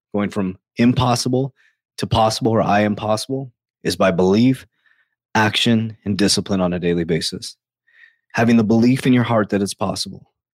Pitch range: 105-135 Hz